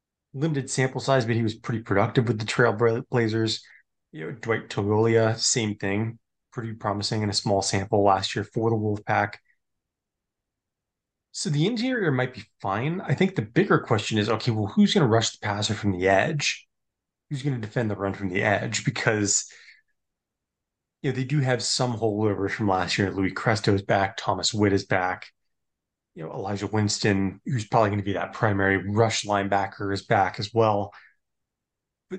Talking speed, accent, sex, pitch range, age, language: 180 wpm, American, male, 100-125 Hz, 20-39, English